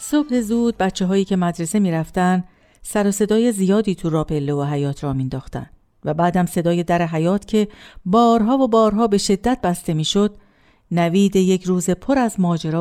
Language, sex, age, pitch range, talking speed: Persian, female, 50-69, 170-240 Hz, 170 wpm